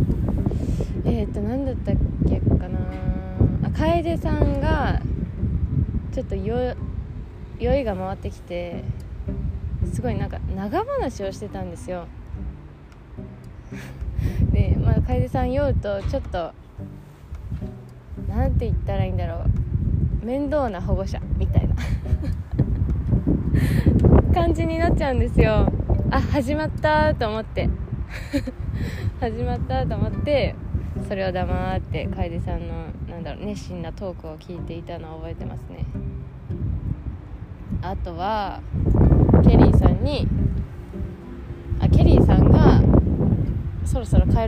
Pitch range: 80-100 Hz